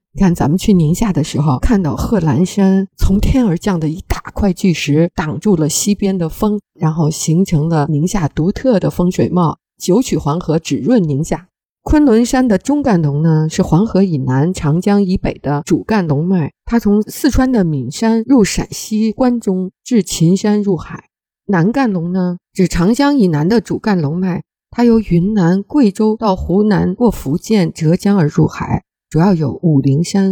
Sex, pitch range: female, 160-215 Hz